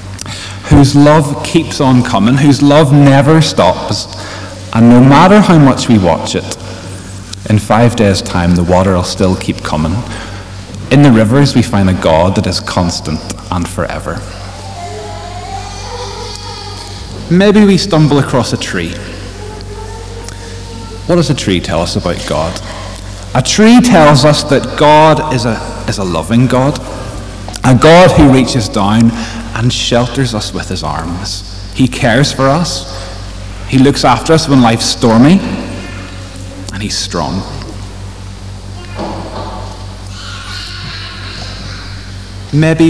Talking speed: 125 wpm